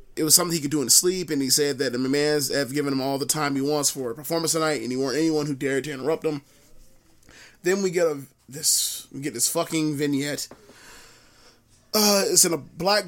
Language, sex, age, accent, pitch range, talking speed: English, male, 20-39, American, 145-170 Hz, 230 wpm